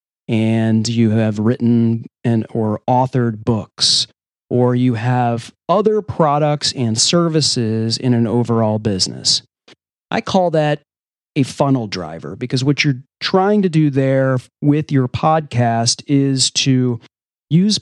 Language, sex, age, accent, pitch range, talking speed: English, male, 30-49, American, 115-150 Hz, 130 wpm